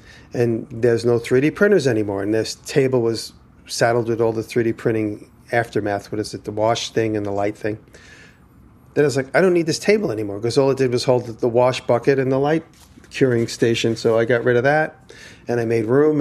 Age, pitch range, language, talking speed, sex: 40-59, 115-140 Hz, English, 225 wpm, male